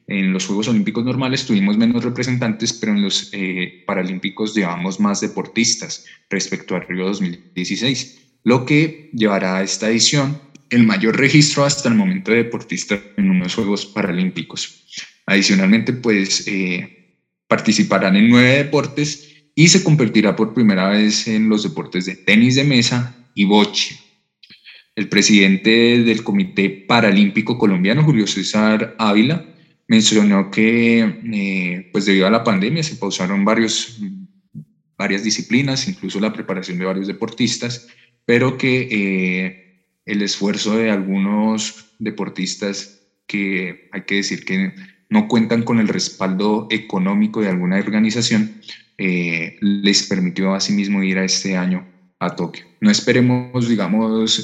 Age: 20-39